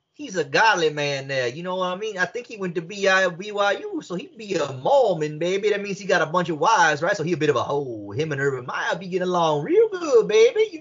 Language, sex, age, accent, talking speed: English, male, 30-49, American, 280 wpm